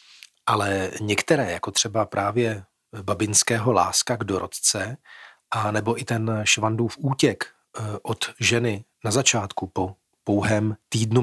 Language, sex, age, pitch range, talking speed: Czech, male, 40-59, 105-120 Hz, 120 wpm